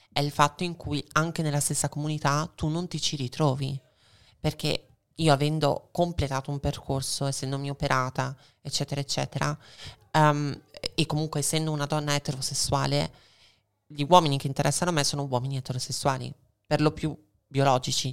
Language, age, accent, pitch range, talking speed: Italian, 20-39, native, 140-160 Hz, 145 wpm